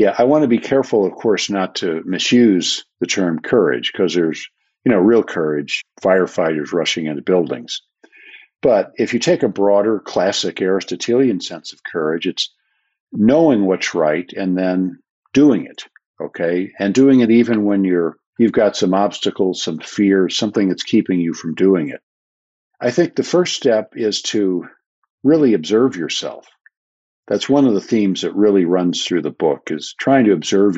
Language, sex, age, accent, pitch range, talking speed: English, male, 50-69, American, 90-115 Hz, 170 wpm